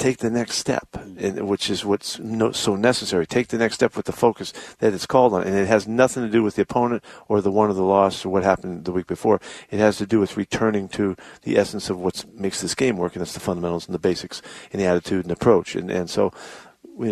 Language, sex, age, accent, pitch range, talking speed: English, male, 50-69, American, 95-115 Hz, 250 wpm